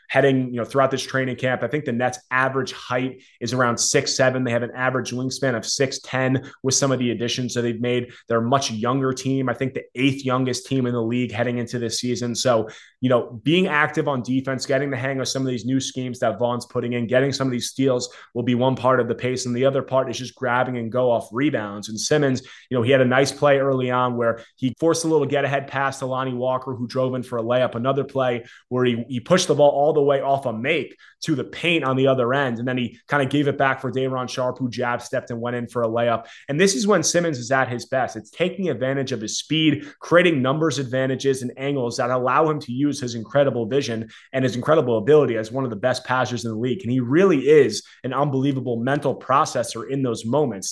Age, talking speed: 20-39, 255 wpm